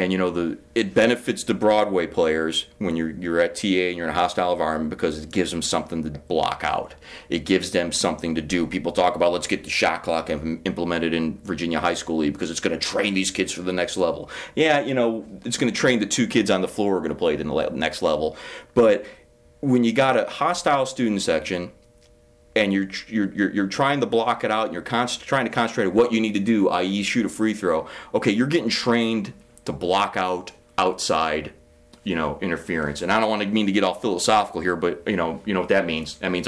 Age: 30-49